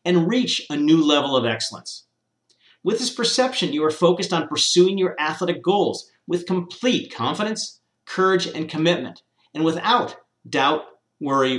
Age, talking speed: 40-59, 145 wpm